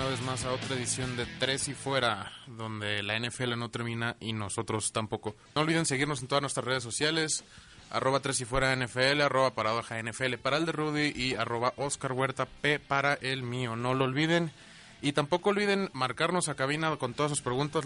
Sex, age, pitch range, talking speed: male, 20-39, 120-145 Hz, 200 wpm